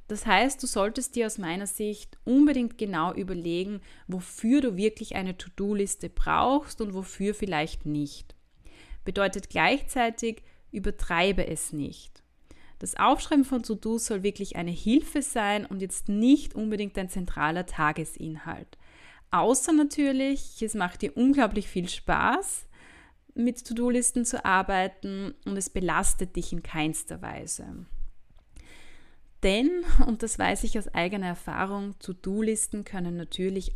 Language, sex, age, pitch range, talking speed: German, female, 20-39, 175-230 Hz, 130 wpm